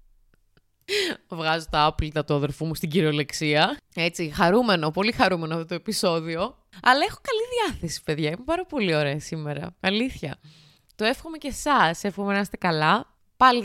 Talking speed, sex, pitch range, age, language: 155 wpm, female, 160-235 Hz, 20-39, Greek